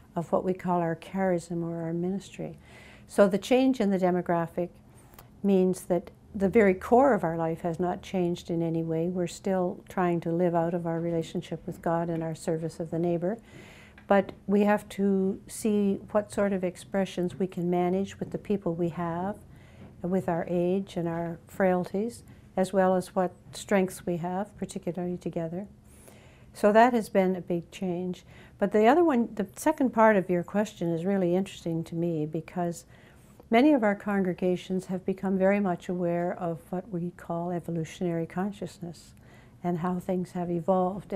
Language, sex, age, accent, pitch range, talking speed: English, female, 60-79, American, 170-195 Hz, 175 wpm